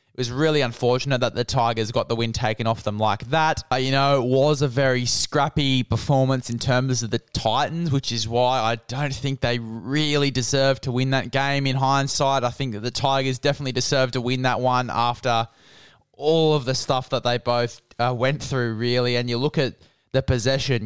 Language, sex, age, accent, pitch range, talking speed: English, male, 20-39, Australian, 125-145 Hz, 205 wpm